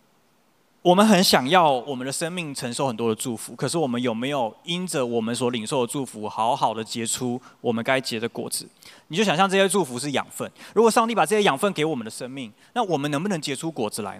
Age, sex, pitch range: 20-39, male, 140-220 Hz